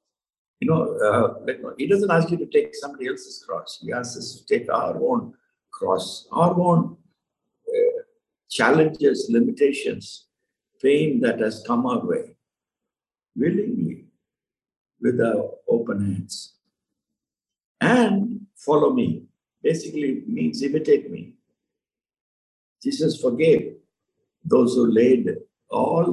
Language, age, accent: English, 60-79, Indian